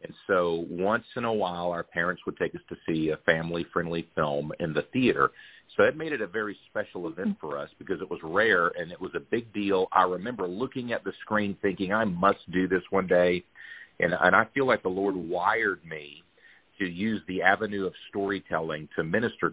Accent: American